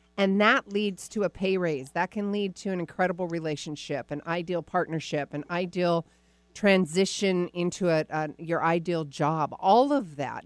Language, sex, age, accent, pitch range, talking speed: English, female, 40-59, American, 160-195 Hz, 165 wpm